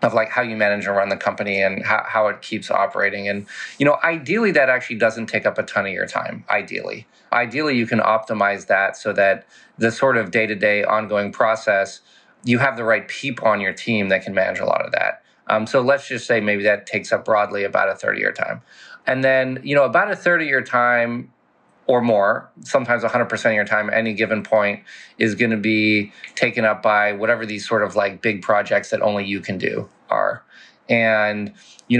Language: English